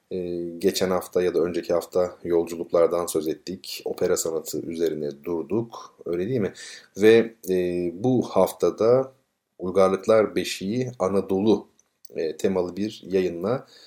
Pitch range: 95-125 Hz